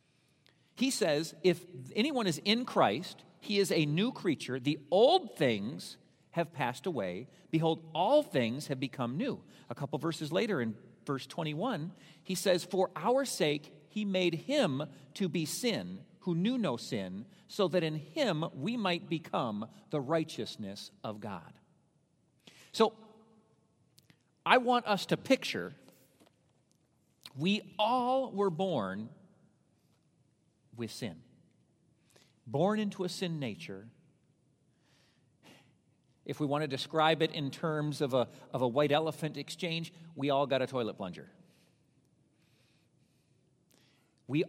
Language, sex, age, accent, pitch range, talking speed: English, male, 40-59, American, 140-180 Hz, 130 wpm